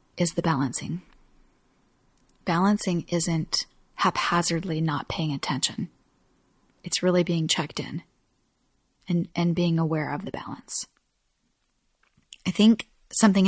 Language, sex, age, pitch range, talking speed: English, female, 20-39, 165-190 Hz, 105 wpm